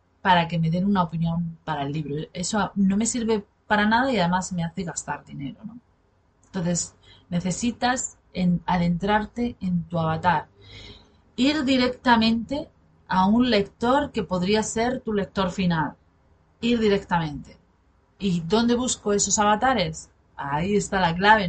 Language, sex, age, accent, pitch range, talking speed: Spanish, female, 30-49, Spanish, 155-215 Hz, 140 wpm